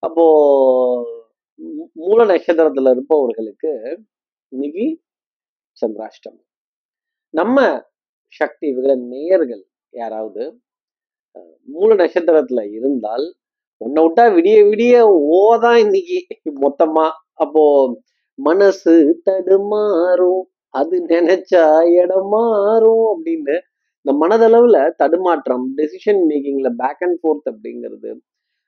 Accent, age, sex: native, 30-49, male